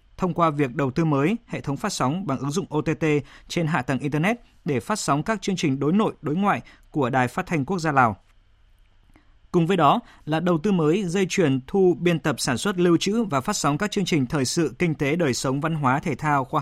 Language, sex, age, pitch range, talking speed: Vietnamese, male, 20-39, 135-180 Hz, 245 wpm